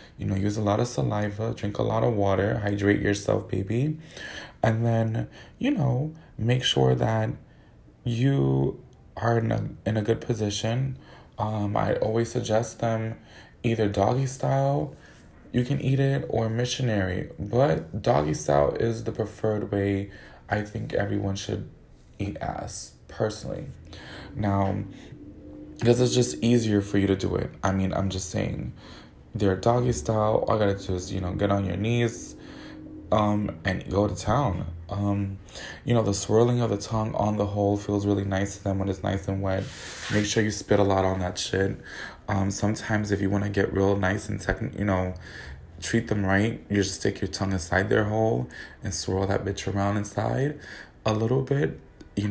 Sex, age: male, 20-39